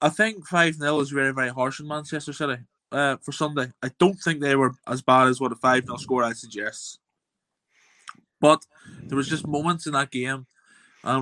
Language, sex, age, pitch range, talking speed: English, male, 20-39, 125-145 Hz, 195 wpm